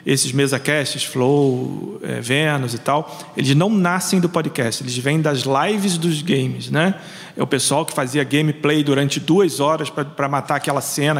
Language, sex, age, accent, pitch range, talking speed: Portuguese, male, 40-59, Brazilian, 145-175 Hz, 170 wpm